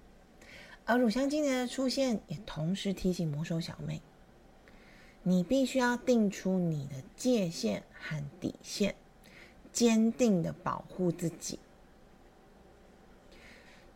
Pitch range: 175-240 Hz